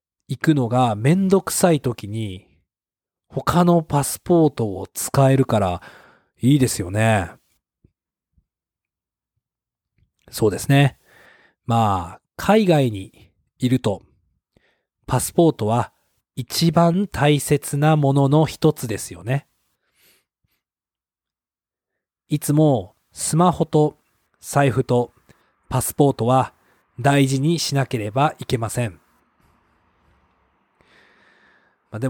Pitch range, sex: 105-150 Hz, male